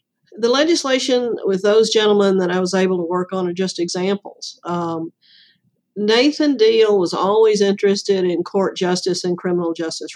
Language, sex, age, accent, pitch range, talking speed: English, female, 50-69, American, 180-210 Hz, 160 wpm